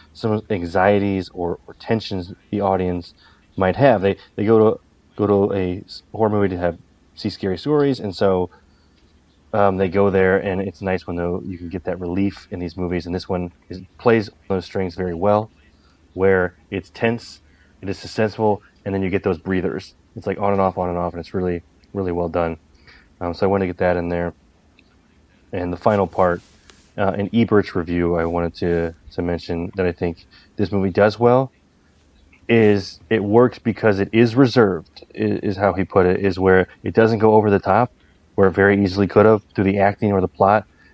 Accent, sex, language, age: American, male, English, 30-49